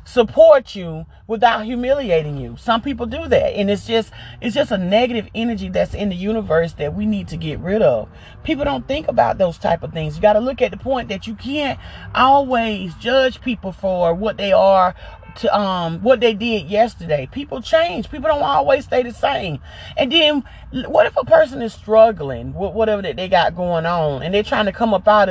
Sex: male